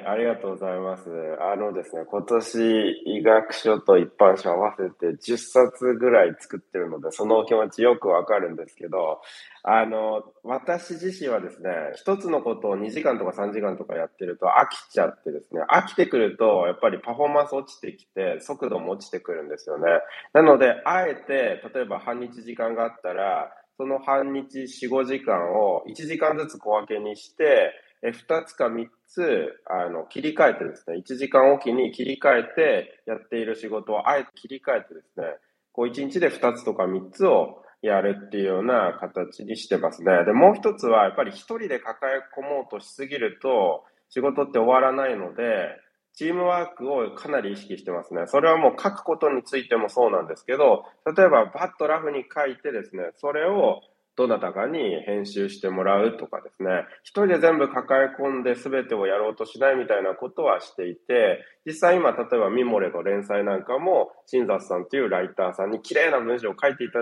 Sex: male